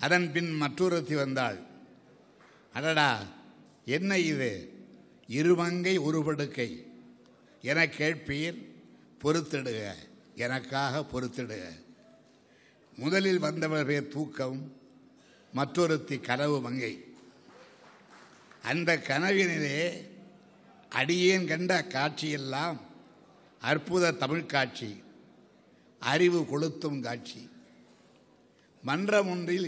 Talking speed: 70 wpm